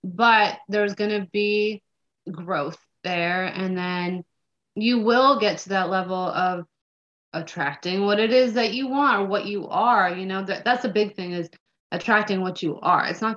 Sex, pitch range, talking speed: female, 185-220 Hz, 180 wpm